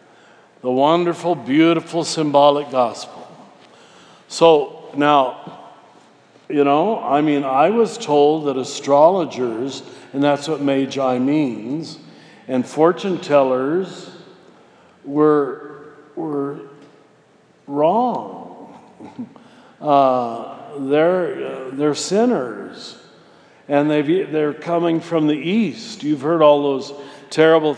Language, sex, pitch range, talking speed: English, male, 145-170 Hz, 95 wpm